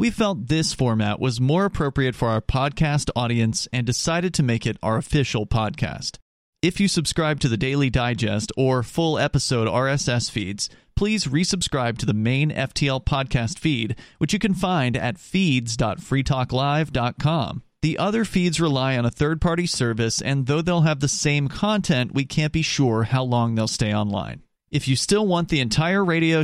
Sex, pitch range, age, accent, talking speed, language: male, 120-165 Hz, 40-59, American, 175 wpm, English